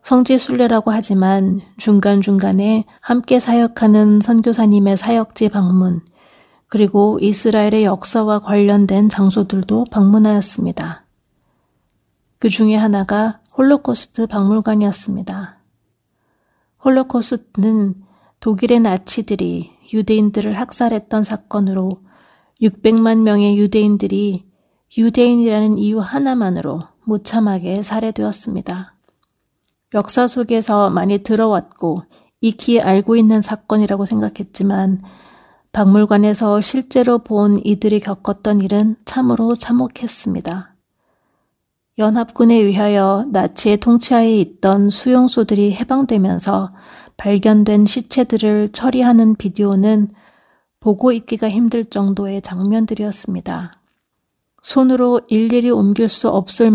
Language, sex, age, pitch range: Korean, female, 40-59, 200-230 Hz